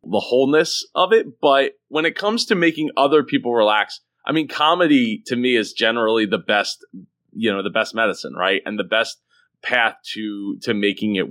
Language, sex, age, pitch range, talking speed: English, male, 30-49, 115-170 Hz, 190 wpm